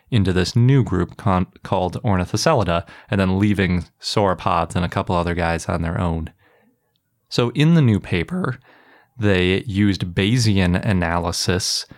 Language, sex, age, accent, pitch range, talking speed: English, male, 20-39, American, 90-110 Hz, 135 wpm